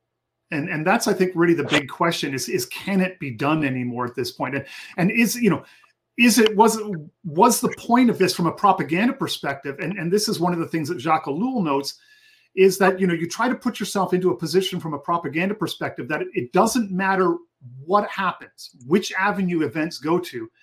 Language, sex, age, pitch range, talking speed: English, male, 40-59, 155-195 Hz, 220 wpm